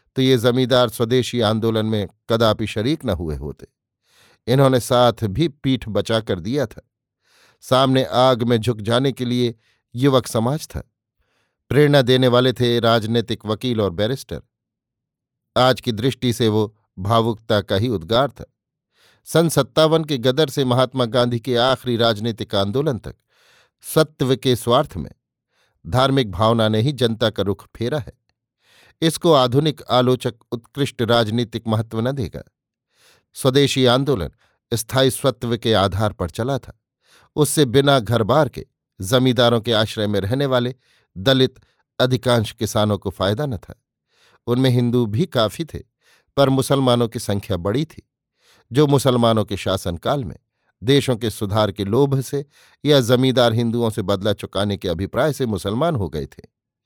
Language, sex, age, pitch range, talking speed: Hindi, male, 50-69, 110-130 Hz, 150 wpm